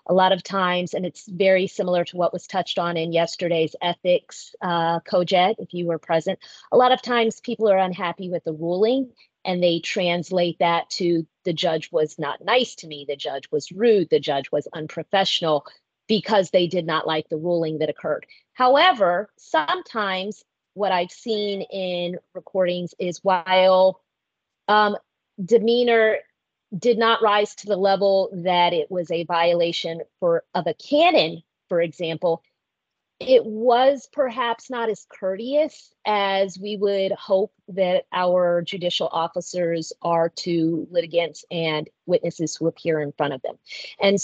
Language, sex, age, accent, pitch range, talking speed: English, female, 30-49, American, 170-205 Hz, 155 wpm